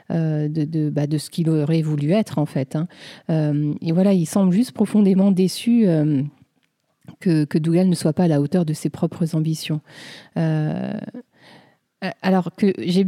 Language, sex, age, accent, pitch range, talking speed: French, female, 30-49, French, 160-195 Hz, 175 wpm